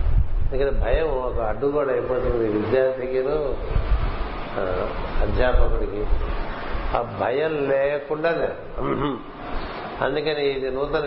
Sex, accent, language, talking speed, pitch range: male, native, Telugu, 75 wpm, 130-145 Hz